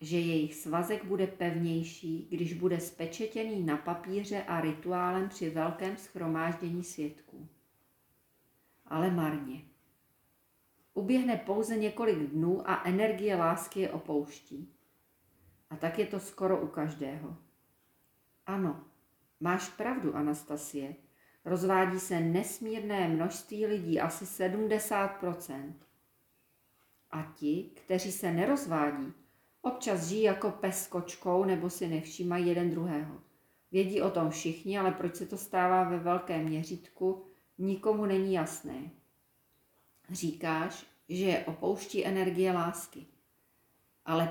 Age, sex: 40-59, female